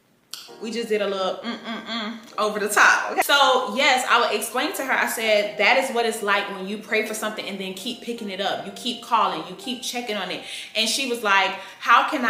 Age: 20-39